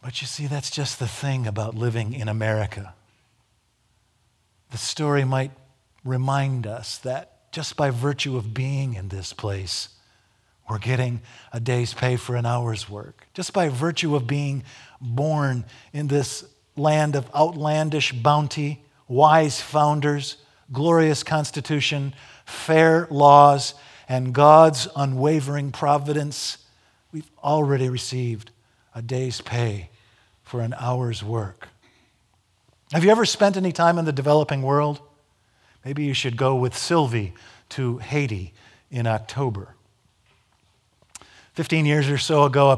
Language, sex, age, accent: English, male, 50-69, American